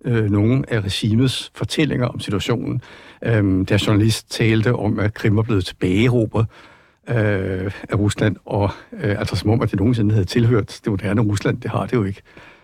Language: Danish